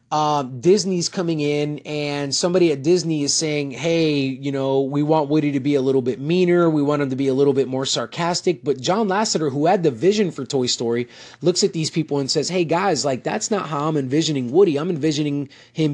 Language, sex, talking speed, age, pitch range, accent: English, male, 225 wpm, 30-49, 135-185 Hz, American